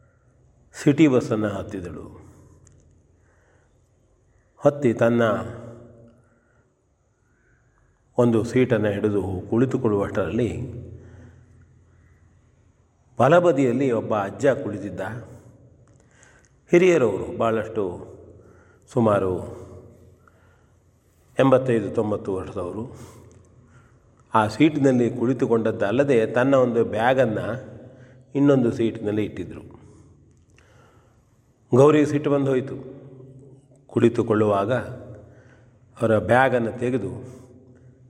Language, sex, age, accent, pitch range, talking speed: Kannada, male, 40-59, native, 105-125 Hz, 60 wpm